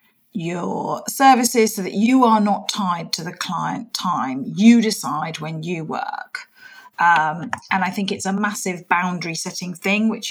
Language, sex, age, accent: English, female, 40-59, British